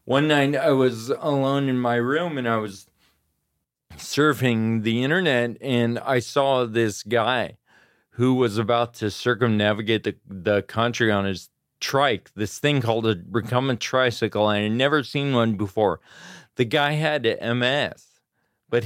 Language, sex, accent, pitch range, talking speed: English, male, American, 110-130 Hz, 150 wpm